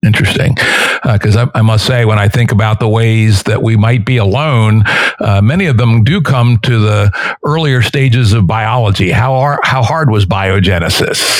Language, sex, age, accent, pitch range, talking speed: English, male, 60-79, American, 105-130 Hz, 190 wpm